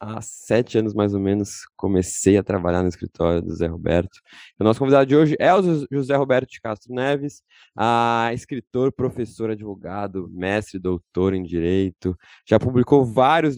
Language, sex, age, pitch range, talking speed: Portuguese, male, 20-39, 95-125 Hz, 160 wpm